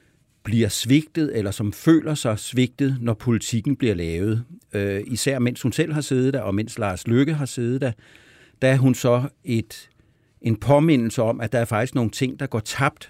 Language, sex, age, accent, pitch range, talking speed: Danish, male, 60-79, native, 105-130 Hz, 195 wpm